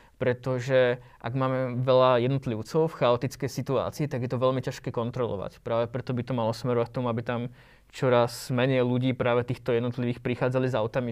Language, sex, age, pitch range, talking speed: Slovak, male, 20-39, 115-130 Hz, 180 wpm